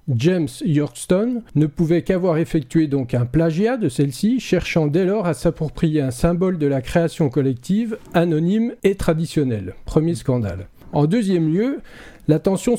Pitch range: 140-180 Hz